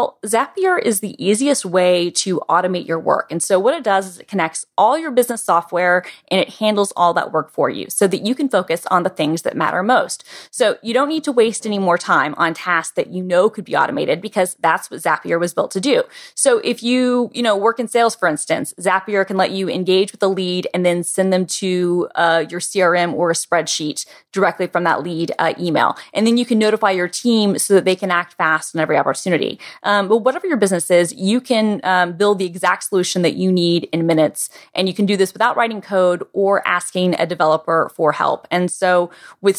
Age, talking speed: 20-39, 230 wpm